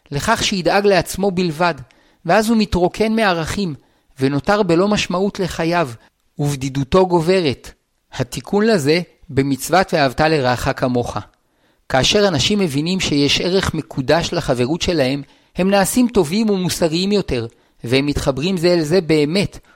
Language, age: Hebrew, 50-69